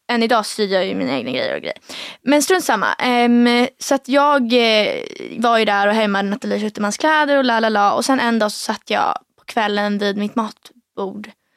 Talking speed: 195 wpm